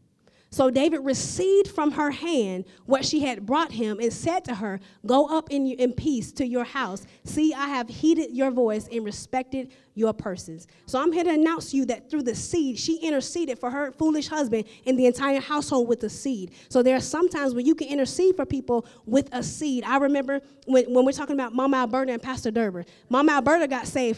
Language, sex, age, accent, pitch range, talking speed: English, female, 20-39, American, 230-285 Hz, 215 wpm